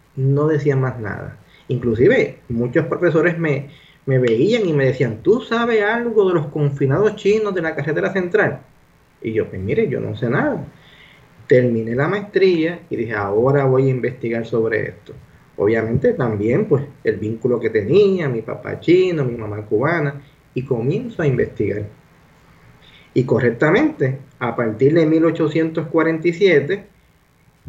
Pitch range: 125-165 Hz